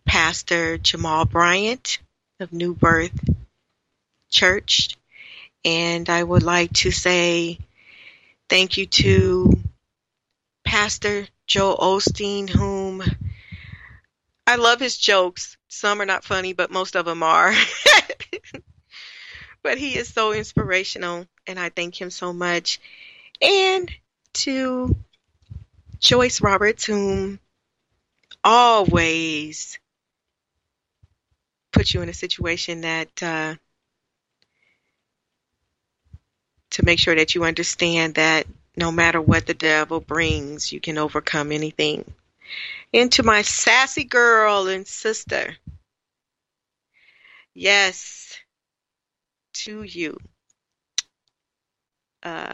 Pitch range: 165-210 Hz